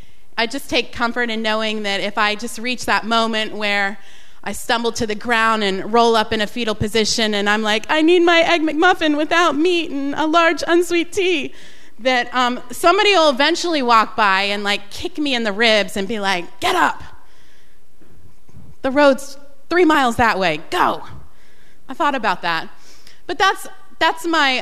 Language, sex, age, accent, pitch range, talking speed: English, female, 30-49, American, 205-260 Hz, 185 wpm